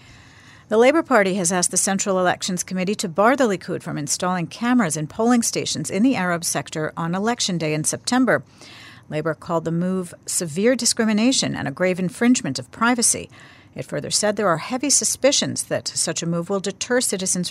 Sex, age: female, 50-69